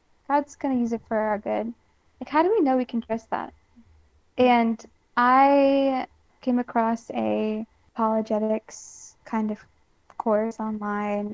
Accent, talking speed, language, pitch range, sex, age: American, 145 wpm, English, 215-250 Hz, female, 10-29